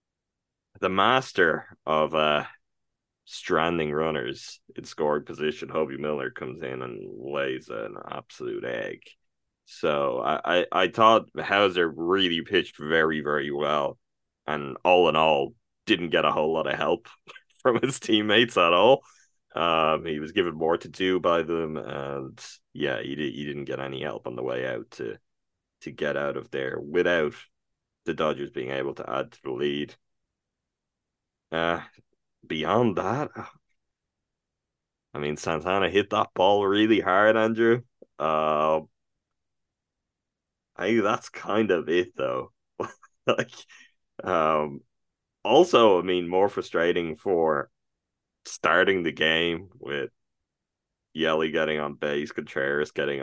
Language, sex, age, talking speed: English, male, 20-39, 135 wpm